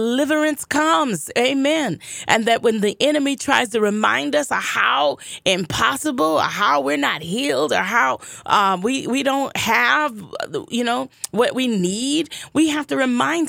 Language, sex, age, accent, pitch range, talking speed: English, female, 30-49, American, 240-310 Hz, 160 wpm